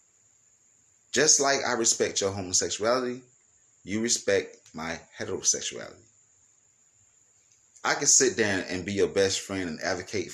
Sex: male